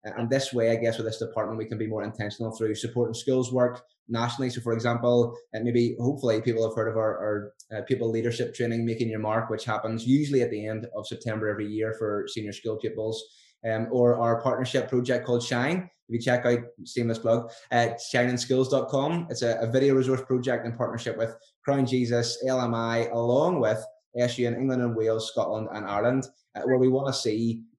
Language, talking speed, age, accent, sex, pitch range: English, 205 wpm, 20-39, British, male, 110-125 Hz